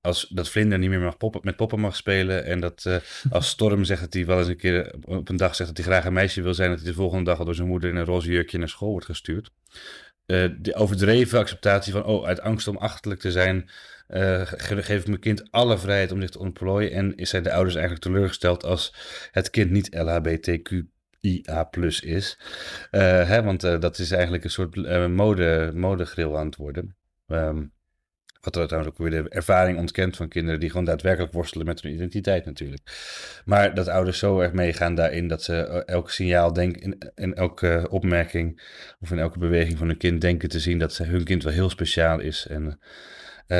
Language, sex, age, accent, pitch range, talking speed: Dutch, male, 30-49, Dutch, 85-95 Hz, 215 wpm